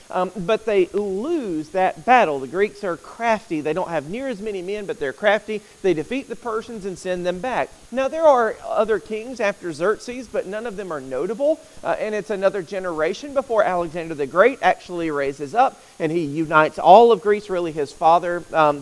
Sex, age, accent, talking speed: male, 40-59, American, 200 wpm